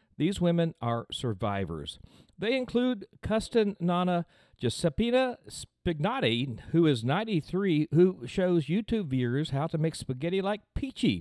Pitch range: 110-170 Hz